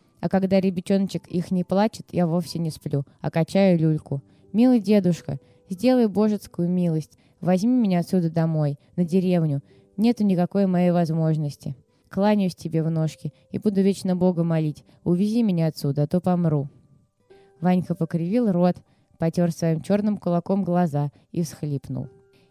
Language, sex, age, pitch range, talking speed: Russian, female, 20-39, 155-195 Hz, 140 wpm